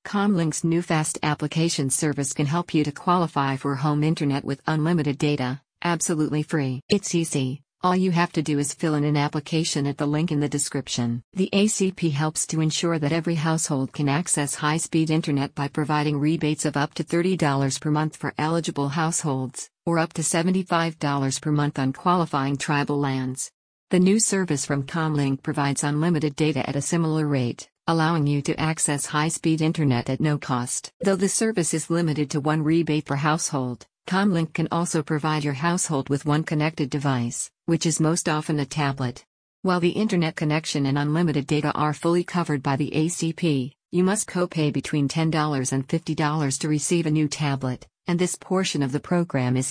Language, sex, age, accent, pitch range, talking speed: English, female, 50-69, American, 145-165 Hz, 180 wpm